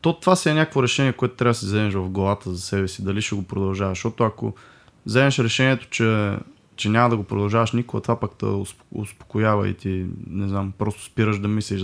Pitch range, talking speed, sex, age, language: 100-120 Hz, 220 wpm, male, 20-39, Bulgarian